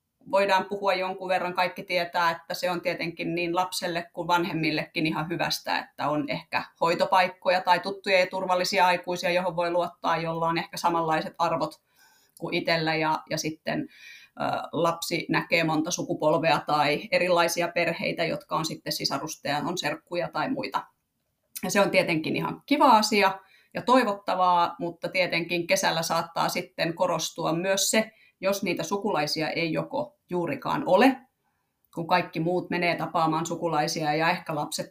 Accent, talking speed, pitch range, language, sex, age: native, 145 wpm, 165-185 Hz, Finnish, female, 30-49